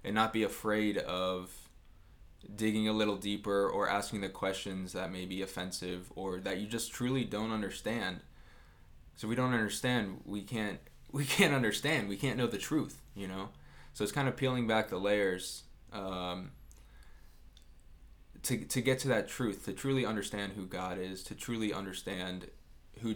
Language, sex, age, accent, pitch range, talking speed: English, male, 20-39, American, 90-105 Hz, 170 wpm